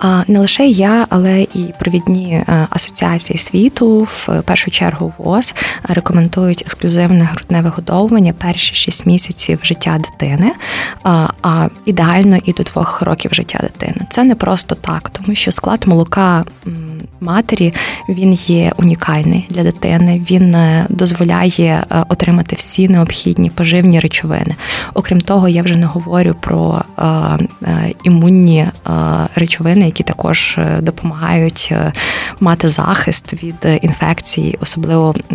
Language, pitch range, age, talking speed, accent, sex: Ukrainian, 160-185 Hz, 20-39, 115 wpm, native, female